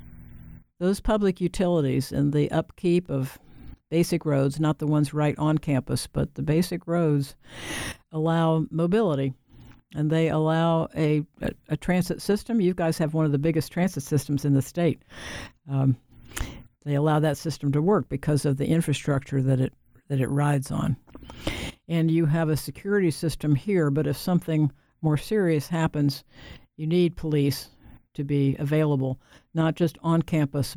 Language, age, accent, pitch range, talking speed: English, 60-79, American, 140-170 Hz, 155 wpm